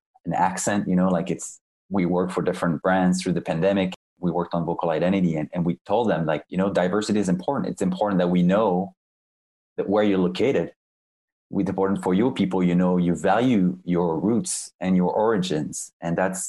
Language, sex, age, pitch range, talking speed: English, male, 20-39, 90-100 Hz, 200 wpm